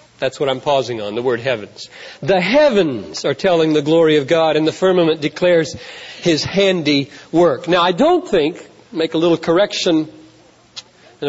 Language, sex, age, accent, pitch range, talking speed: Hindi, male, 40-59, American, 165-245 Hz, 170 wpm